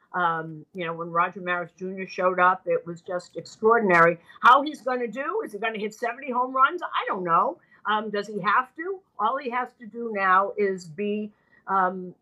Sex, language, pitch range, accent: female, English, 175-225 Hz, American